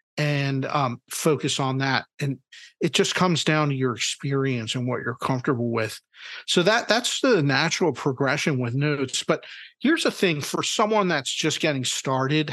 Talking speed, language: 175 wpm, English